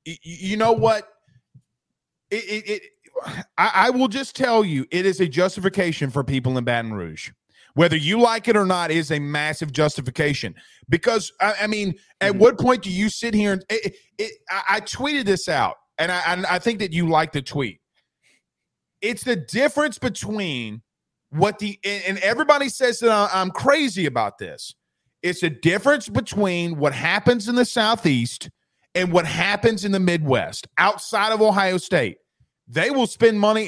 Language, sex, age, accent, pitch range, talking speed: English, male, 30-49, American, 170-230 Hz, 175 wpm